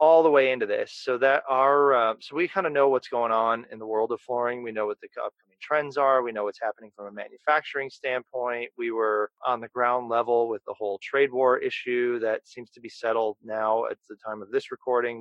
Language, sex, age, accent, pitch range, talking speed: English, male, 30-49, American, 110-145 Hz, 240 wpm